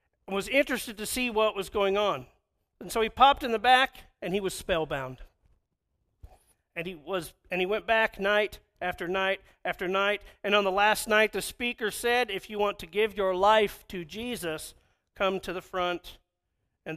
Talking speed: 190 wpm